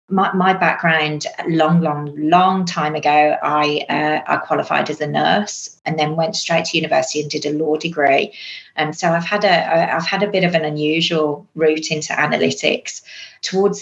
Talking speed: 180 wpm